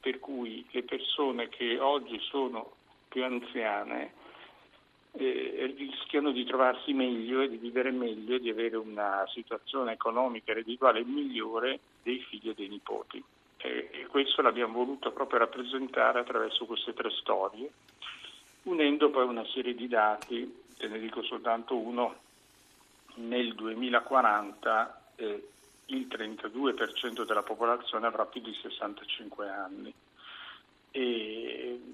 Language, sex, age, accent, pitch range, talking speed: Italian, male, 50-69, native, 115-130 Hz, 125 wpm